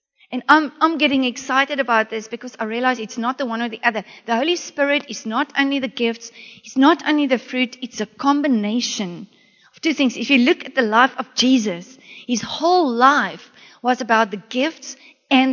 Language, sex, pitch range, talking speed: English, female, 215-260 Hz, 200 wpm